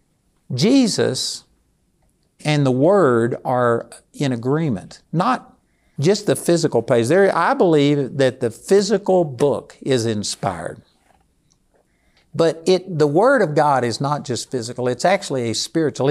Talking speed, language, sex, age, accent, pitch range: 125 wpm, English, male, 60-79, American, 125-170 Hz